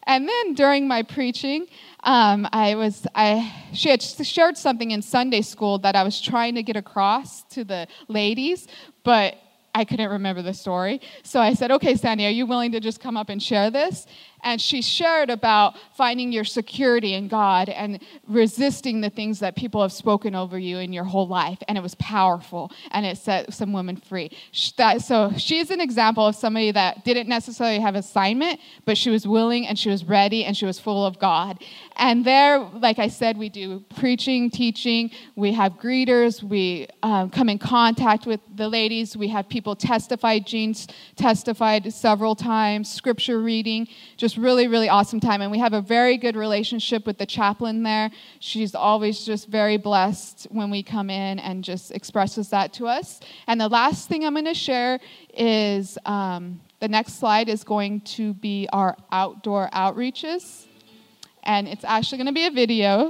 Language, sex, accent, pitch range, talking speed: English, female, American, 200-240 Hz, 185 wpm